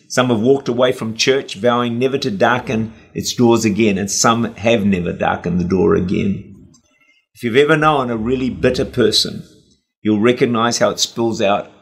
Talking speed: 180 wpm